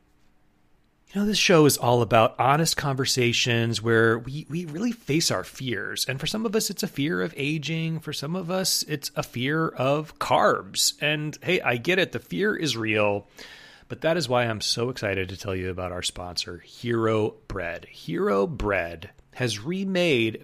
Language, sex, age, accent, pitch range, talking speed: English, male, 30-49, American, 115-160 Hz, 185 wpm